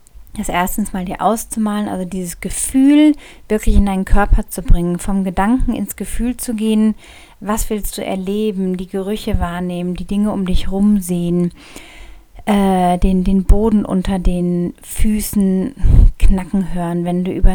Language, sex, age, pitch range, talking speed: German, female, 30-49, 180-215 Hz, 150 wpm